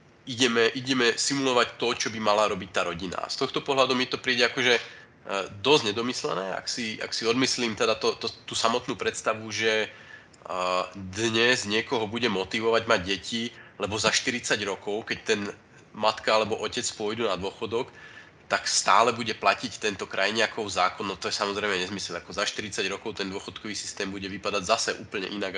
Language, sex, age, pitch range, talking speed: Slovak, male, 30-49, 100-120 Hz, 170 wpm